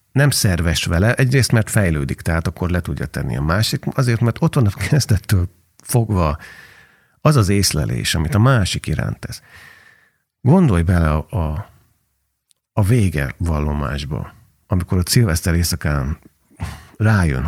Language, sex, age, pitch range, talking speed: Hungarian, male, 50-69, 80-110 Hz, 135 wpm